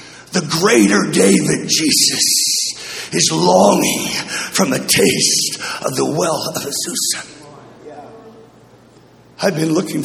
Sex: male